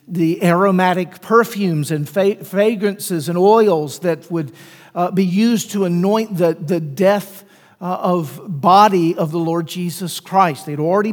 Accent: American